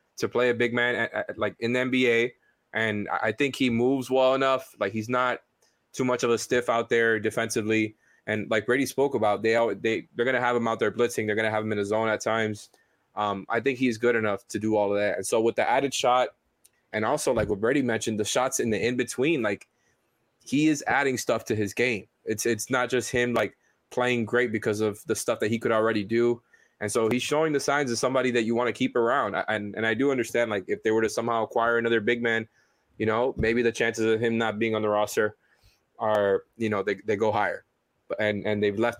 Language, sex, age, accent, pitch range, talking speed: English, male, 20-39, American, 110-120 Hz, 245 wpm